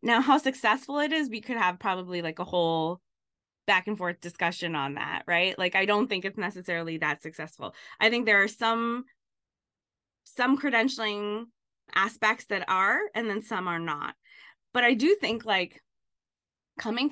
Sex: female